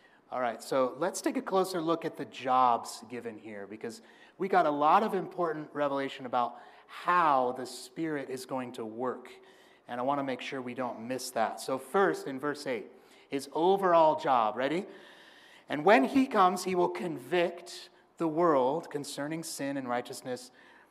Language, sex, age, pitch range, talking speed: English, male, 30-49, 130-175 Hz, 175 wpm